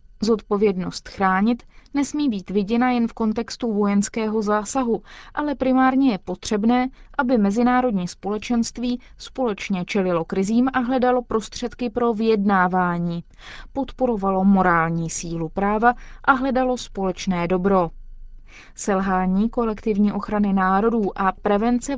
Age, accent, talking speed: 20-39, native, 105 wpm